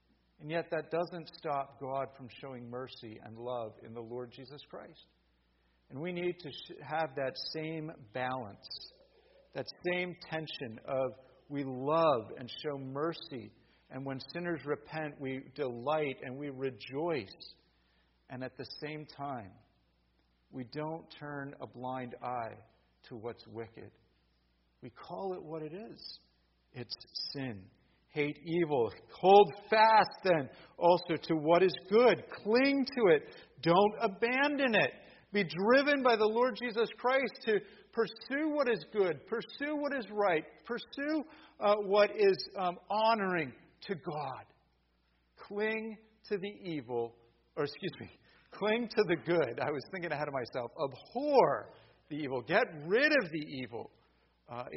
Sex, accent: male, American